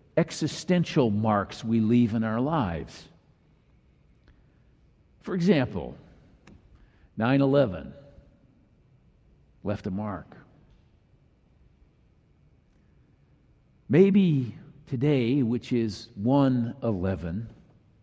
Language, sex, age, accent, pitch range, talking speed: English, male, 50-69, American, 115-165 Hz, 60 wpm